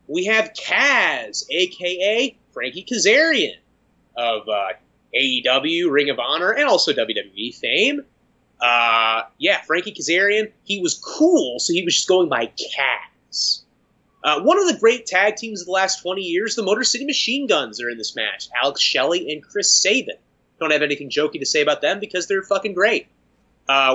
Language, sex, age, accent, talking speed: English, male, 30-49, American, 175 wpm